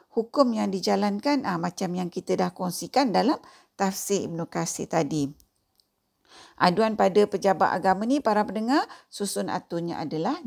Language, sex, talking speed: Malay, female, 140 wpm